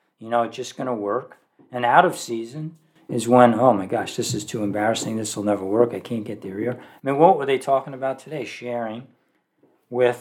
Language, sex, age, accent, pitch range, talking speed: English, male, 40-59, American, 110-135 Hz, 230 wpm